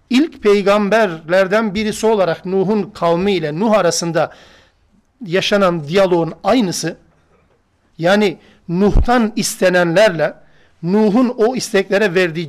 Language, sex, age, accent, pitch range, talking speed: Turkish, male, 50-69, native, 160-210 Hz, 85 wpm